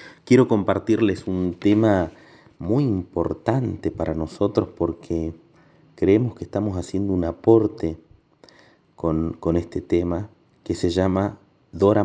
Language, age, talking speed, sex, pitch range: Spanish, 30-49, 115 wpm, male, 85-105 Hz